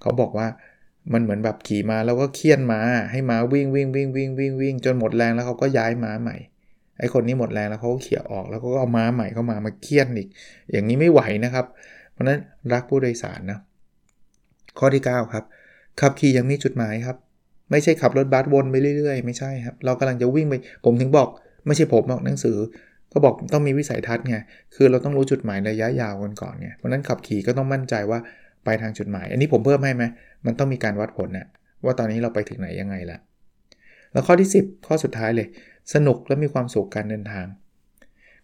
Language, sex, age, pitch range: Thai, male, 20-39, 110-135 Hz